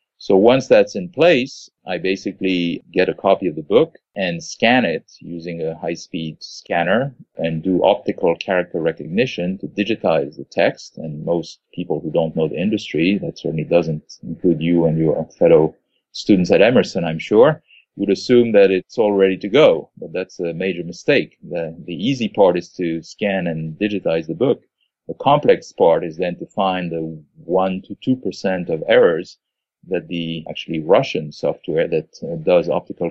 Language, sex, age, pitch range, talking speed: English, male, 40-59, 80-100 Hz, 170 wpm